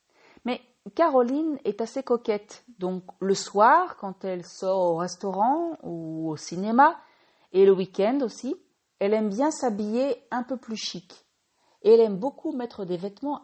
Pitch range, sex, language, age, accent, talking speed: 180-260 Hz, female, French, 40-59, French, 145 wpm